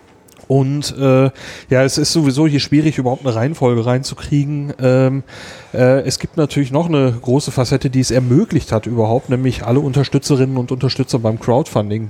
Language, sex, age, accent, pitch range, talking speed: German, male, 30-49, German, 115-140 Hz, 165 wpm